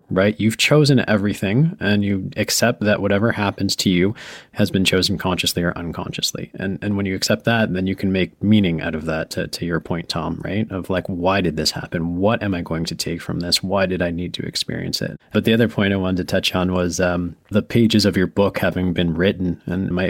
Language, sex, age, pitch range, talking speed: English, male, 20-39, 90-105 Hz, 240 wpm